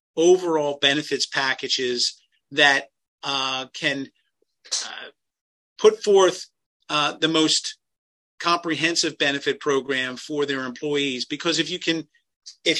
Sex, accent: male, American